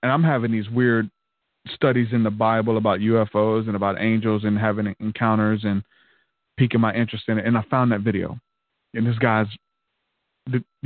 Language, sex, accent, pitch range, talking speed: English, male, American, 110-135 Hz, 175 wpm